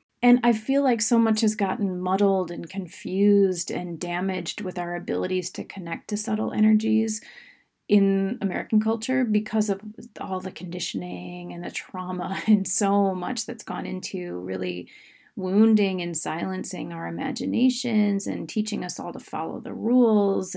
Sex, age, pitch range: female, 30-49, 180-225 Hz